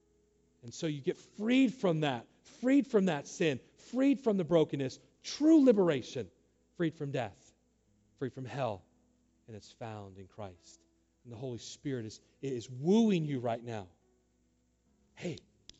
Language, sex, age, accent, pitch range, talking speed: English, male, 40-59, American, 105-155 Hz, 150 wpm